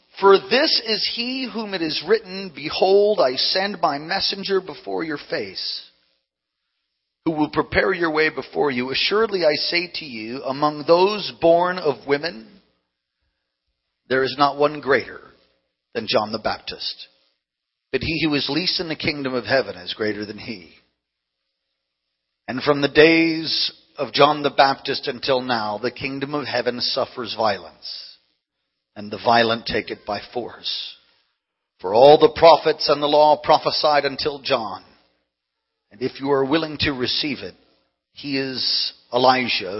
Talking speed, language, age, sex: 150 wpm, English, 40-59, male